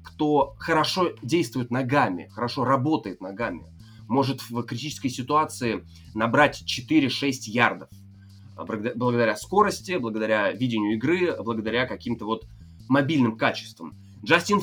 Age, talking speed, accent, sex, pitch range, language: 20-39, 105 wpm, native, male, 110-150 Hz, Russian